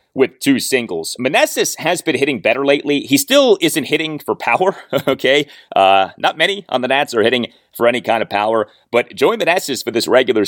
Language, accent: English, American